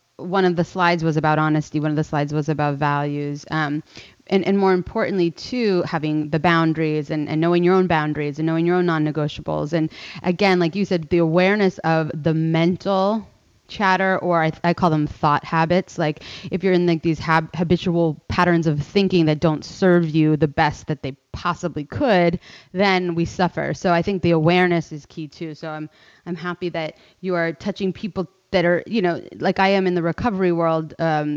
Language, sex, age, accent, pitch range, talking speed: English, female, 20-39, American, 155-180 Hz, 205 wpm